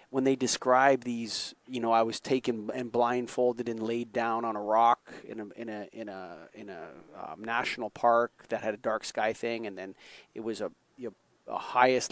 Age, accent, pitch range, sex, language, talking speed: 30-49, American, 115-135 Hz, male, English, 215 wpm